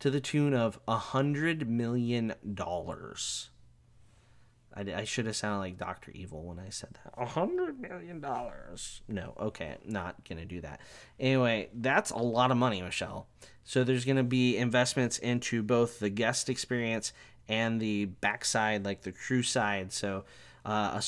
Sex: male